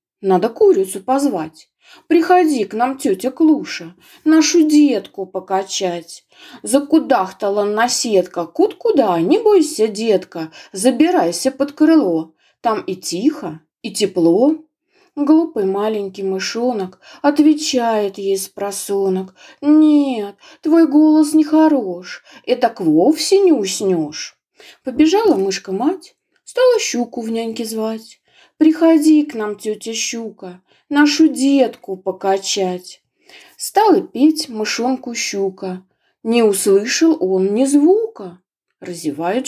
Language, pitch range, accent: Ukrainian, 195-315 Hz, native